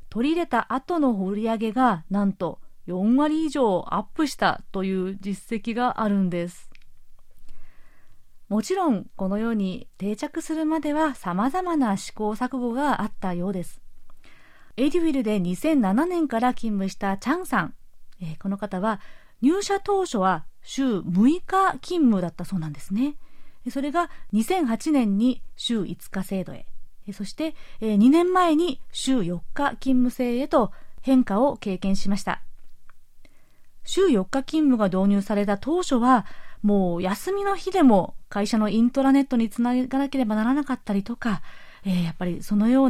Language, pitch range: Japanese, 195-280 Hz